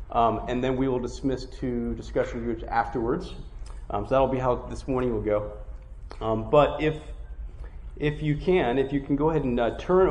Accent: American